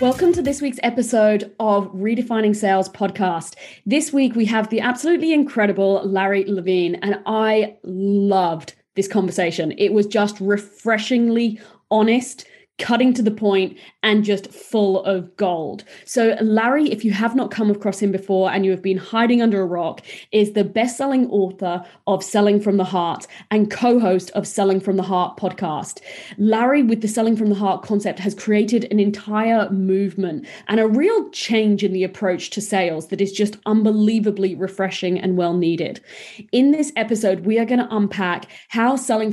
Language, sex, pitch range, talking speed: English, female, 195-230 Hz, 170 wpm